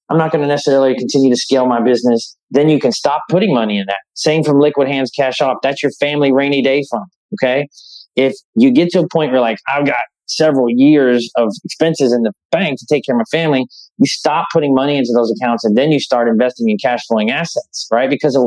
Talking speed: 235 wpm